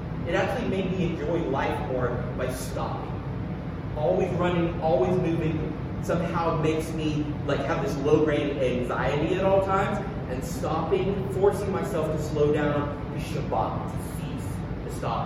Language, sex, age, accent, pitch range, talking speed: English, male, 30-49, American, 135-165 Hz, 145 wpm